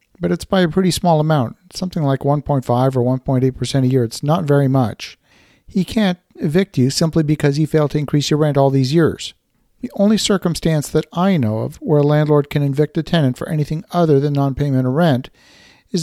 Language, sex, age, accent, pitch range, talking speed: English, male, 50-69, American, 135-170 Hz, 205 wpm